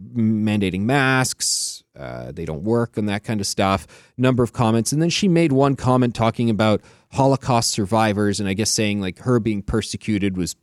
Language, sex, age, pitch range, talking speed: English, male, 30-49, 100-130 Hz, 185 wpm